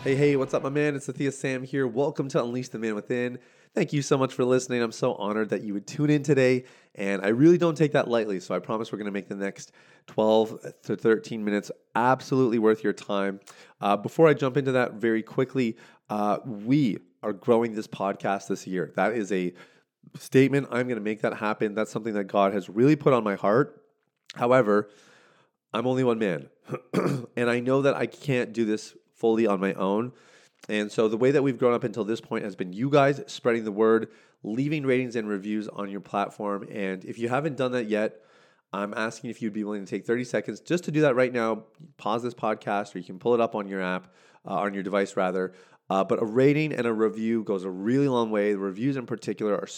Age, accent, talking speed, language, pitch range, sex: 30-49, American, 225 wpm, English, 105-130 Hz, male